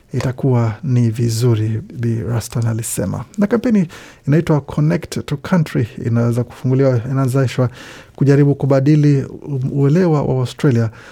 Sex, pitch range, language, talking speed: male, 115-135 Hz, Swahili, 115 wpm